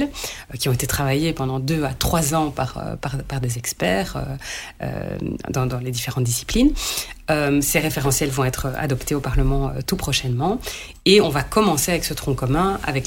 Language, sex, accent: French, female, French